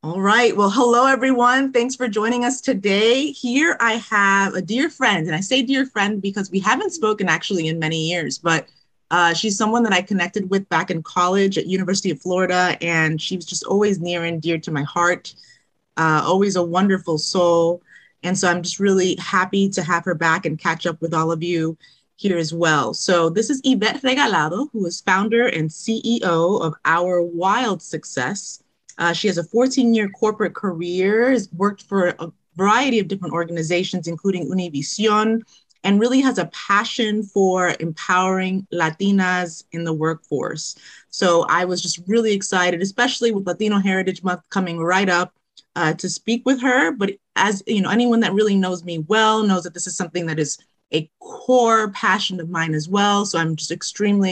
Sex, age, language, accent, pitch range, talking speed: female, 30-49, English, American, 170-215 Hz, 185 wpm